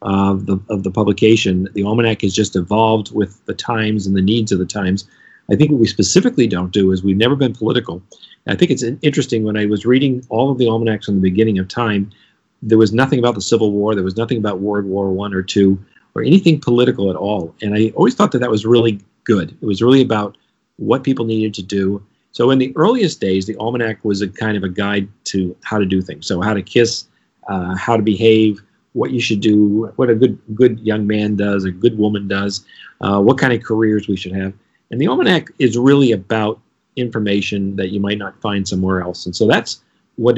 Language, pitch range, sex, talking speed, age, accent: English, 100-115 Hz, male, 230 wpm, 40-59, American